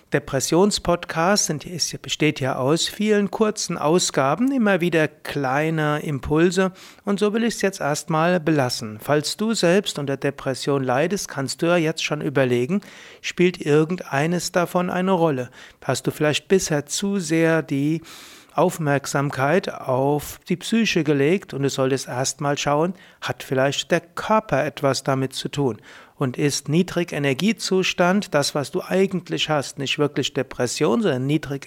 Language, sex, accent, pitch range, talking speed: German, male, German, 140-180 Hz, 145 wpm